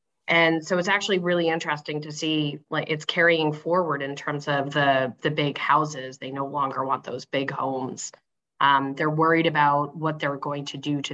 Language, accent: English, American